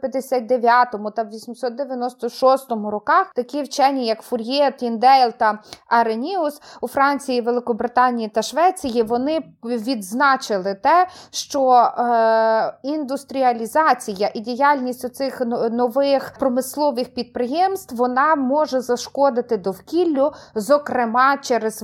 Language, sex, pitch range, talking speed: Ukrainian, female, 240-280 Hz, 95 wpm